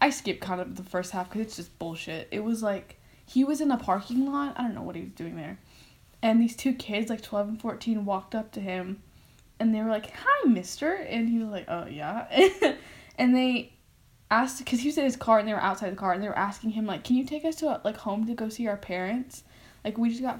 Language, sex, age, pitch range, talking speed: English, female, 10-29, 195-240 Hz, 265 wpm